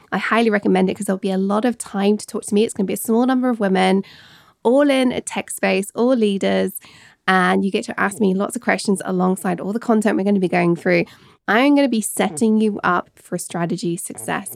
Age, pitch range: 20-39, 190-240 Hz